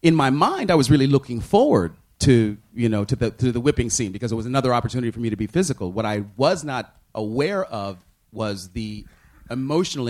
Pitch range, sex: 100-125 Hz, male